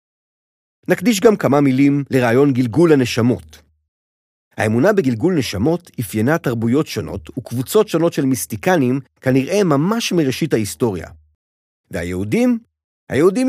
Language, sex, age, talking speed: Hebrew, male, 50-69, 100 wpm